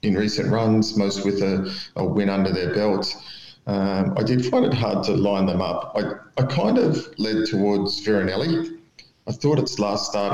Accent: Australian